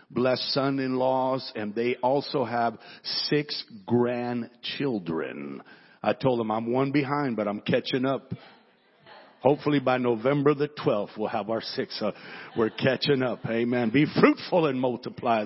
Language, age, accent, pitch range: English, 50-69, American, 120-140 Hz